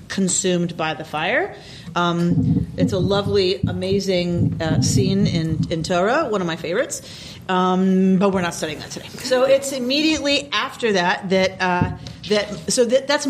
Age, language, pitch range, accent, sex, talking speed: 40-59, English, 180-245 Hz, American, female, 165 wpm